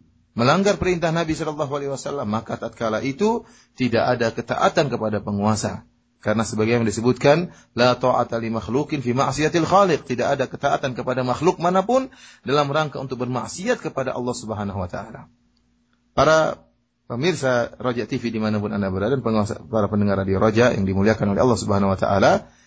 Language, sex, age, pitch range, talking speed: Malay, male, 30-49, 115-160 Hz, 150 wpm